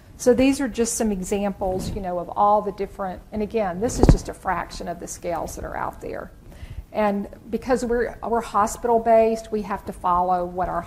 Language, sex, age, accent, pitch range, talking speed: English, female, 50-69, American, 185-225 Hz, 205 wpm